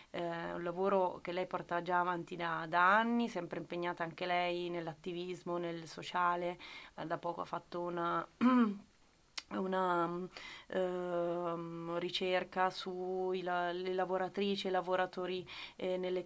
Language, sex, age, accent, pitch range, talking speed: Italian, female, 20-39, native, 170-185 Hz, 130 wpm